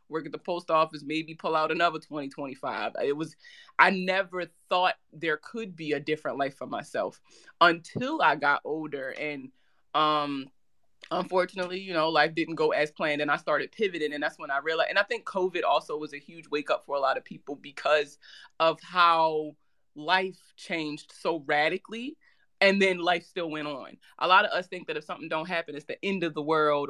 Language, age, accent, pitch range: English, 20-39, American, 150-185 Hz